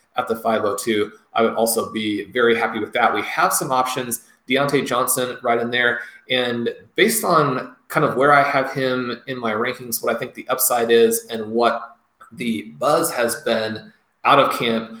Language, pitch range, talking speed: English, 115-130 Hz, 190 wpm